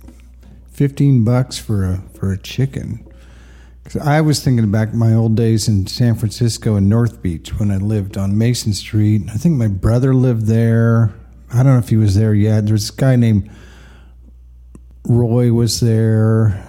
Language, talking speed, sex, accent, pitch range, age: English, 175 wpm, male, American, 90-115 Hz, 50-69